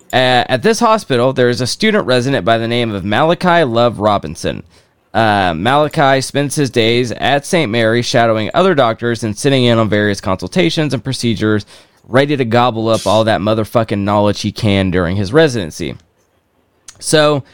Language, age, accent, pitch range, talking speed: English, 20-39, American, 105-145 Hz, 170 wpm